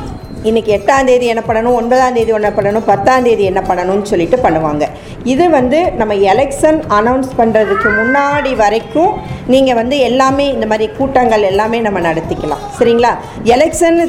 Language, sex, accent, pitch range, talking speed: Tamil, female, native, 210-275 Hz, 140 wpm